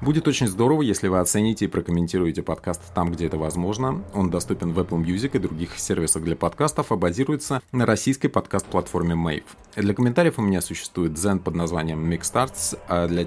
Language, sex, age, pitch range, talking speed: Russian, male, 30-49, 85-110 Hz, 185 wpm